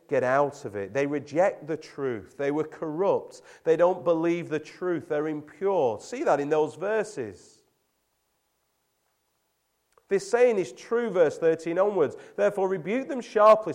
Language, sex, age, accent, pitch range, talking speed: English, male, 30-49, British, 145-200 Hz, 150 wpm